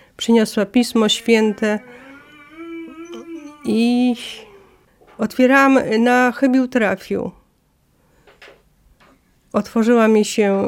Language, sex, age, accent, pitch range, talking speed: Polish, female, 40-59, native, 200-240 Hz, 60 wpm